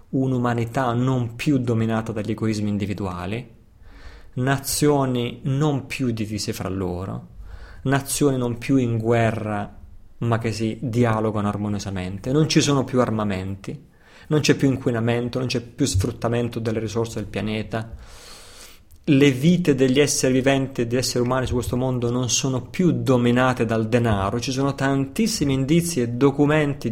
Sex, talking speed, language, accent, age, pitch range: male, 145 wpm, Italian, native, 30-49, 110-135 Hz